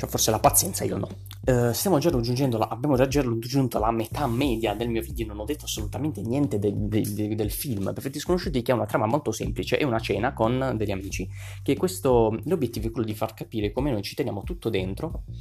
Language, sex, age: Italian, male, 20-39